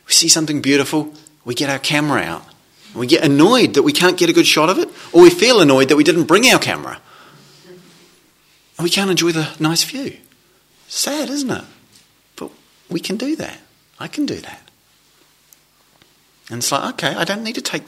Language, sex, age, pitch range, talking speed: English, male, 30-49, 140-175 Hz, 200 wpm